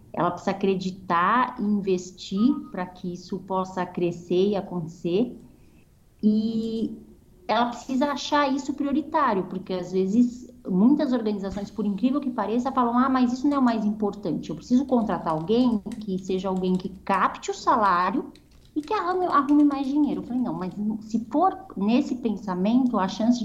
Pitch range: 195-250 Hz